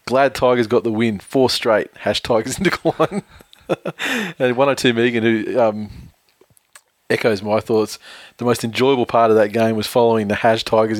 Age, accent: 20-39, Australian